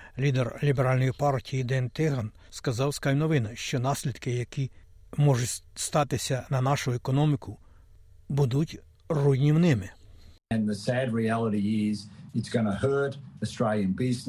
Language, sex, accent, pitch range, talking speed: Ukrainian, male, native, 115-150 Hz, 70 wpm